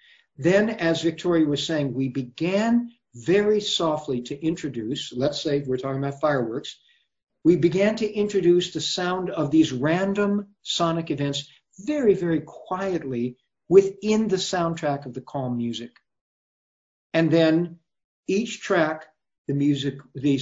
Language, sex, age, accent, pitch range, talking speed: English, male, 60-79, American, 140-180 Hz, 130 wpm